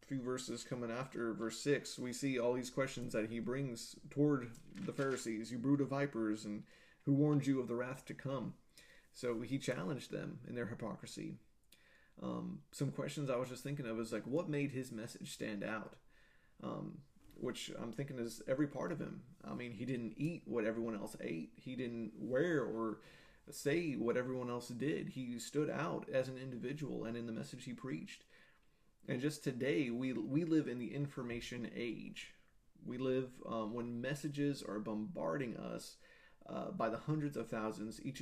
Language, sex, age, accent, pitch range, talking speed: English, male, 30-49, American, 115-140 Hz, 180 wpm